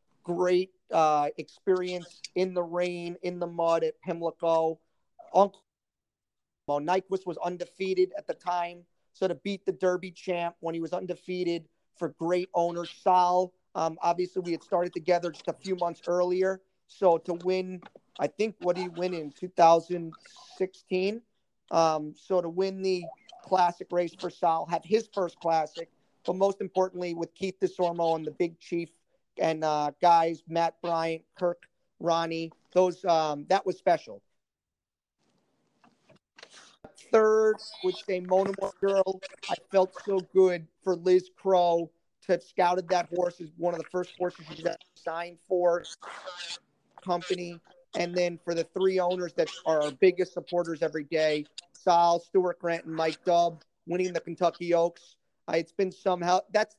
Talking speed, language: 150 wpm, English